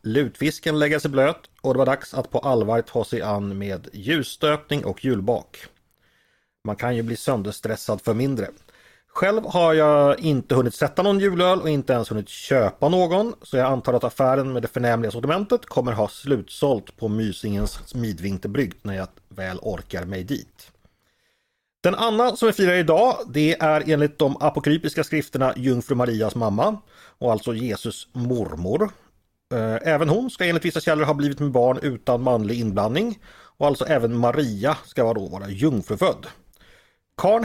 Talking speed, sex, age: 160 wpm, male, 30-49